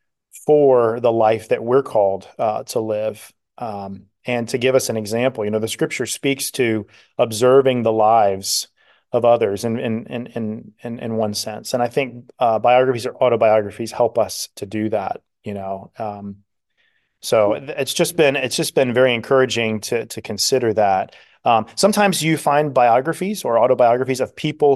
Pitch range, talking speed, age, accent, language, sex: 110-130 Hz, 170 wpm, 30-49, American, English, male